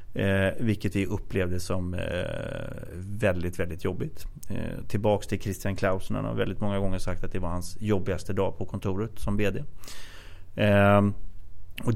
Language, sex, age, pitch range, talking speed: Swedish, male, 30-49, 95-110 Hz, 155 wpm